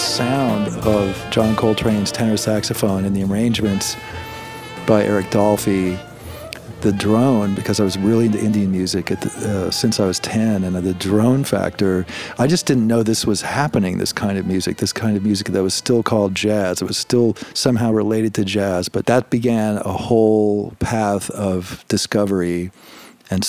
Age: 50-69